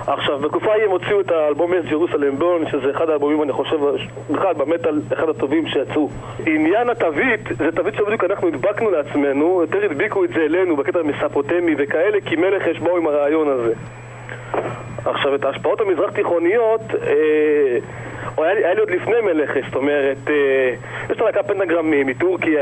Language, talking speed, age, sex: Hebrew, 160 wpm, 30-49, male